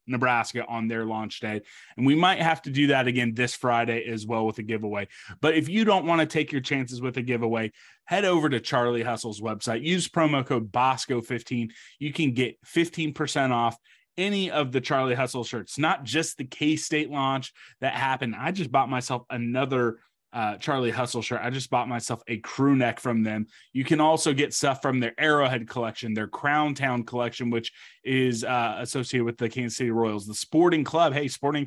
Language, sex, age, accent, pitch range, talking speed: English, male, 20-39, American, 115-145 Hz, 205 wpm